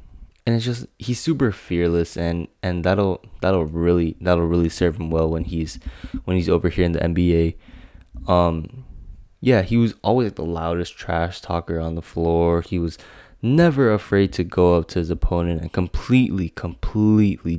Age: 20-39